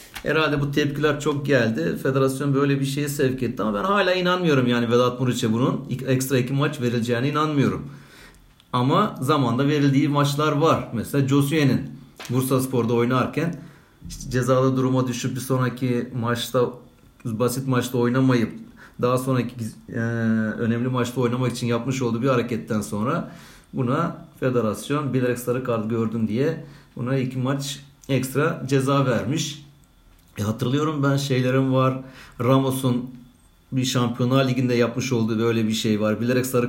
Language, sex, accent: Turkish, male, native